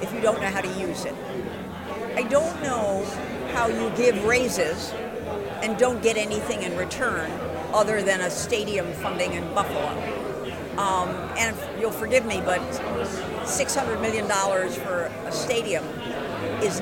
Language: English